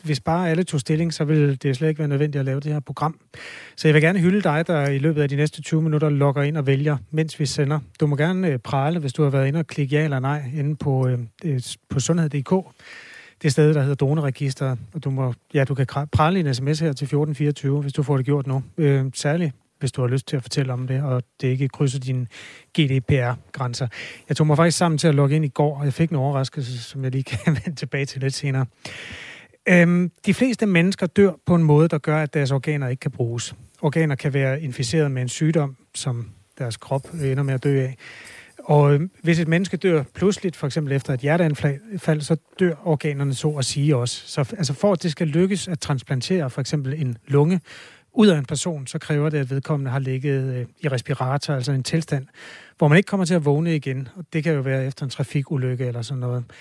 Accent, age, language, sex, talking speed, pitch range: native, 30-49, Danish, male, 230 wpm, 135-160 Hz